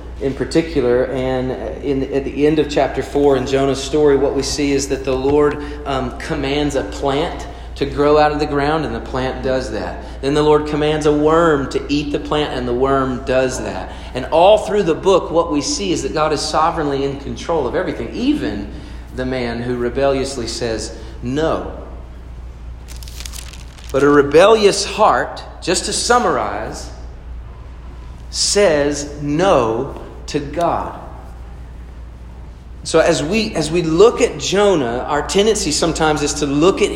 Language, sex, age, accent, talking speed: English, male, 40-59, American, 160 wpm